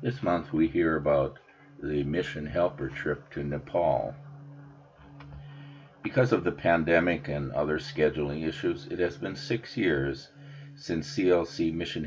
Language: English